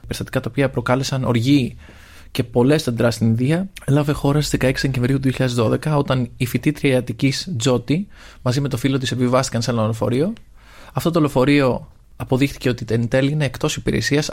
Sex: male